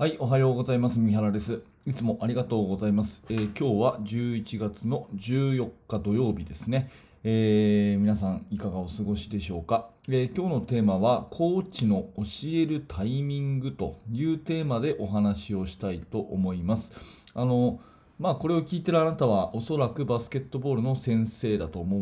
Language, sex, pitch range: Japanese, male, 105-150 Hz